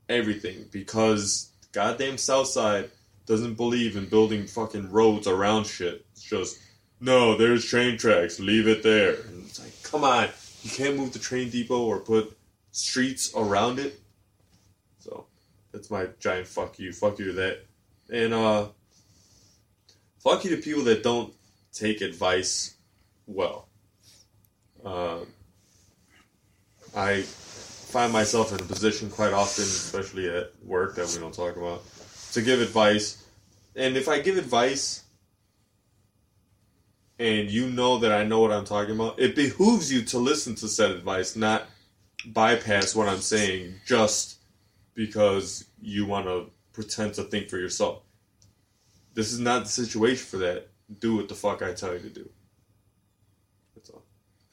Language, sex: English, male